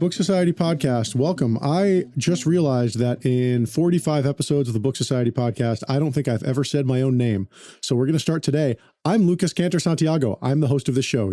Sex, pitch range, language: male, 120-160 Hz, English